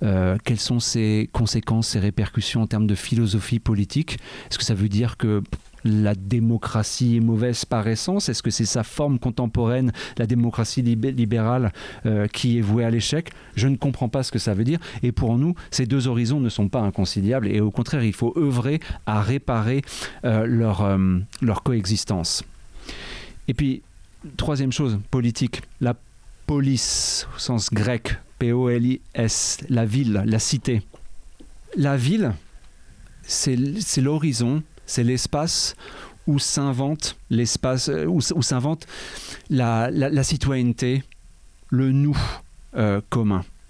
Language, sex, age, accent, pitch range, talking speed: French, male, 40-59, French, 110-135 Hz, 150 wpm